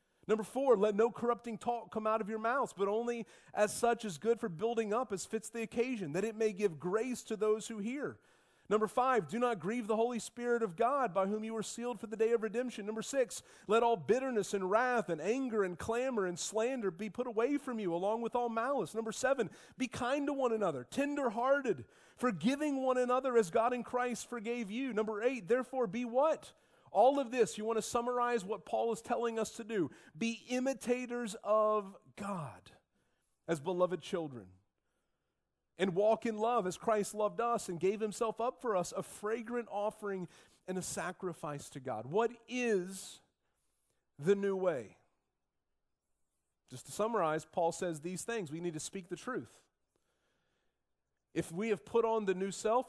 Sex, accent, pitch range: male, American, 195-240 Hz